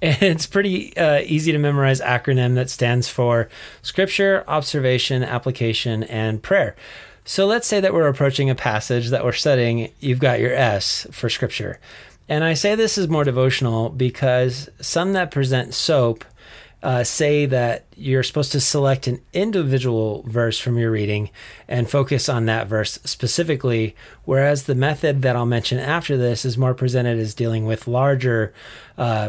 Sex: male